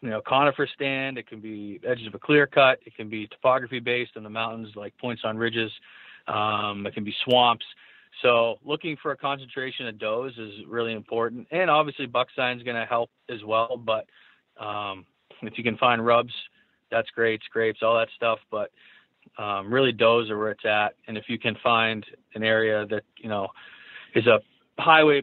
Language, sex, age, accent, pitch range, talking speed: English, male, 30-49, American, 110-130 Hz, 195 wpm